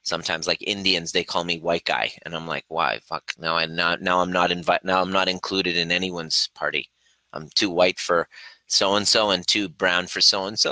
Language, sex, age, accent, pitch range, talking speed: English, male, 30-49, American, 90-115 Hz, 195 wpm